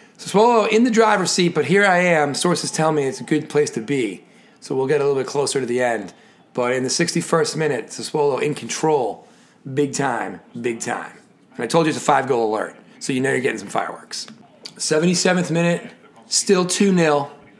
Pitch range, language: 165-250 Hz, English